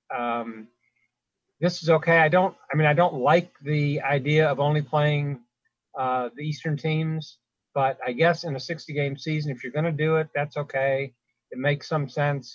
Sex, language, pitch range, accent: male, English, 140-190 Hz, American